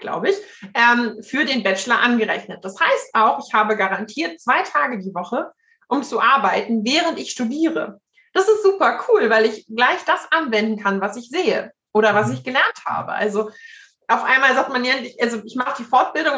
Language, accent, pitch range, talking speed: German, German, 210-270 Hz, 185 wpm